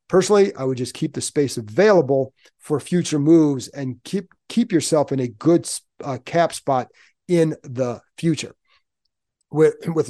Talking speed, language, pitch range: 155 wpm, English, 135-170 Hz